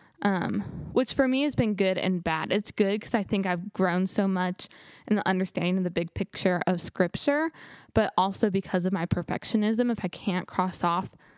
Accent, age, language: American, 10-29, English